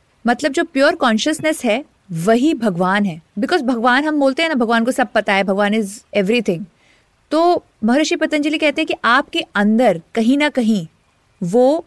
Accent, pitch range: native, 200-285 Hz